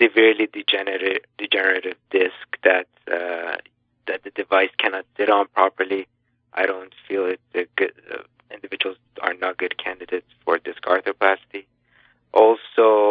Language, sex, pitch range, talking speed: English, male, 95-125 Hz, 135 wpm